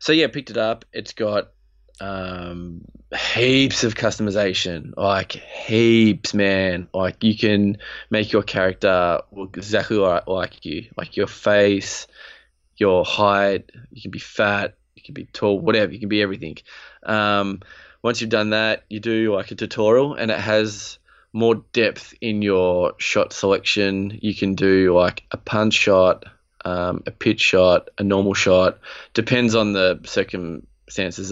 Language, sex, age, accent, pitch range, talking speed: English, male, 20-39, Australian, 95-110 Hz, 155 wpm